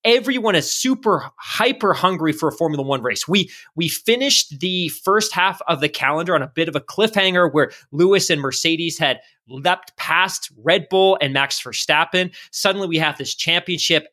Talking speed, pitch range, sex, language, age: 180 wpm, 150-195 Hz, male, English, 20-39